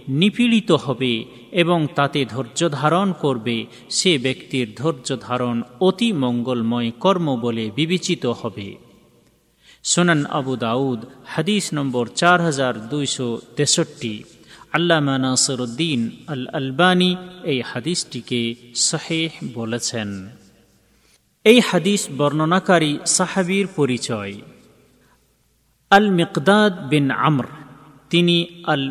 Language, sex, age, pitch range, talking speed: Bengali, male, 40-59, 130-175 Hz, 95 wpm